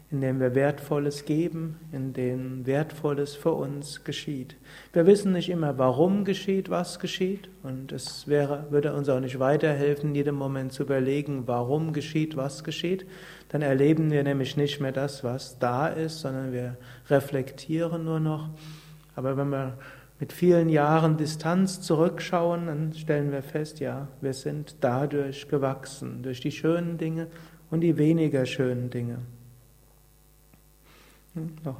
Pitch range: 140-165 Hz